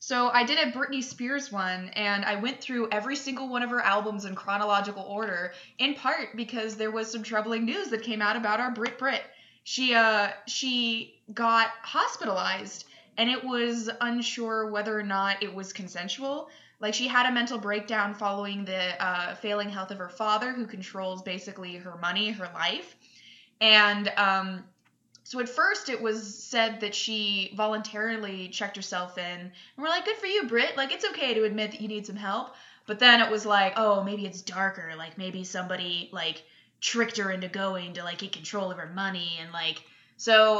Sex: female